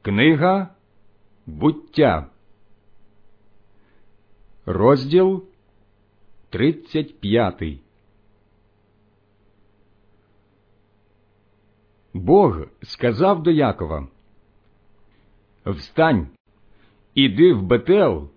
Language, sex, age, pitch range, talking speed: Ukrainian, male, 60-79, 100-145 Hz, 40 wpm